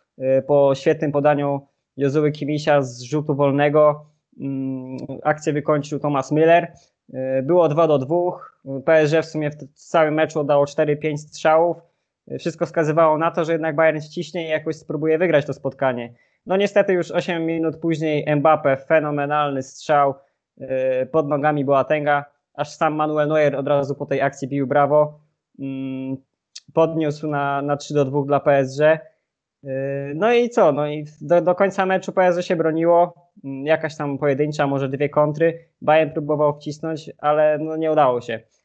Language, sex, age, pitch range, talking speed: Polish, male, 20-39, 145-165 Hz, 150 wpm